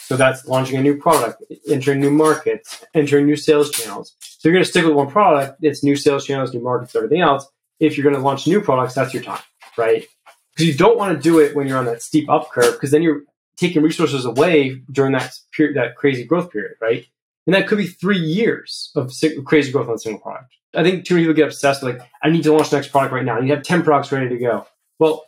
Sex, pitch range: male, 130-155 Hz